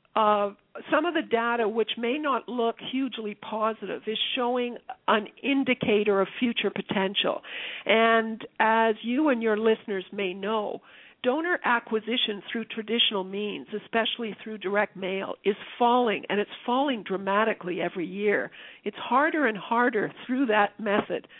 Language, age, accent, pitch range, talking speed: English, 50-69, American, 205-235 Hz, 140 wpm